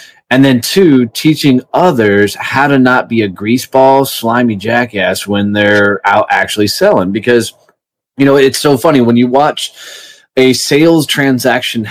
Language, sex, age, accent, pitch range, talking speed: English, male, 30-49, American, 110-135 Hz, 150 wpm